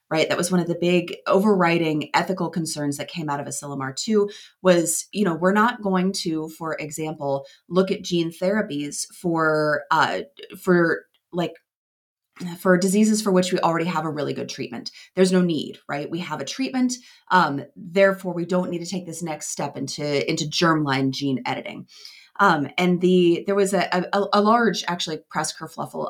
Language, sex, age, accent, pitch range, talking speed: English, female, 30-49, American, 160-205 Hz, 180 wpm